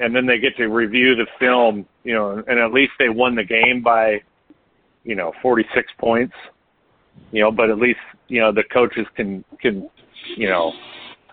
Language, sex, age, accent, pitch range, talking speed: English, male, 40-59, American, 105-140 Hz, 185 wpm